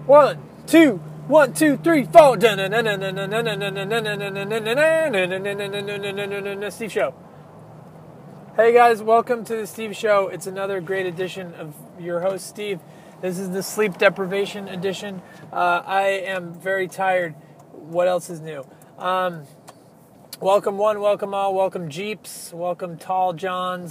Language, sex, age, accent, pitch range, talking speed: English, male, 30-49, American, 165-195 Hz, 100 wpm